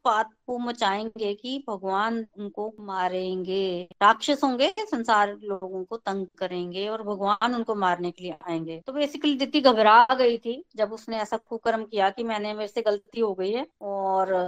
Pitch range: 210-260 Hz